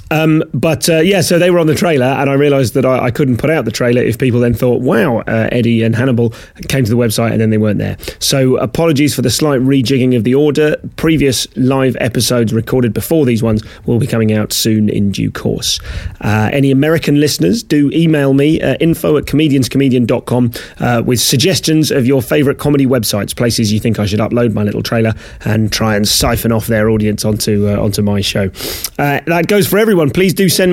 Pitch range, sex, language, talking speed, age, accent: 110-150 Hz, male, English, 210 wpm, 30-49, British